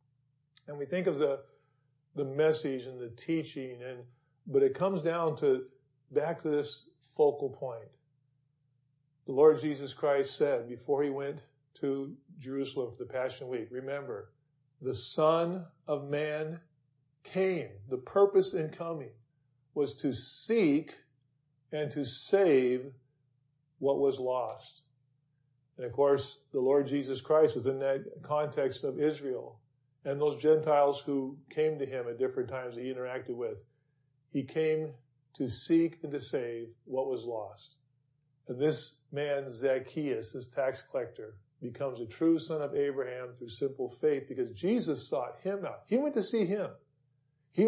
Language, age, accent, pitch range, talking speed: English, 50-69, American, 130-155 Hz, 150 wpm